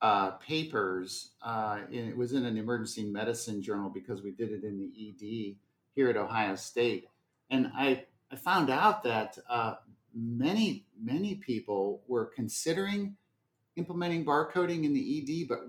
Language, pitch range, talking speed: English, 105-140 Hz, 150 wpm